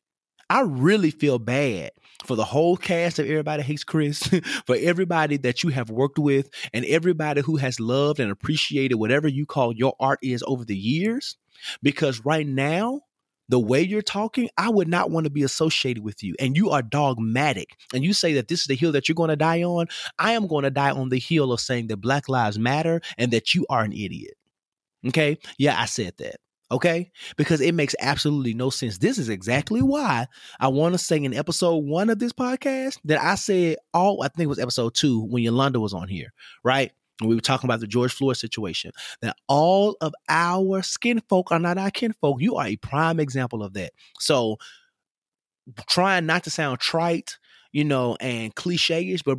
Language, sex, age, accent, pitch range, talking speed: English, male, 30-49, American, 130-170 Hz, 205 wpm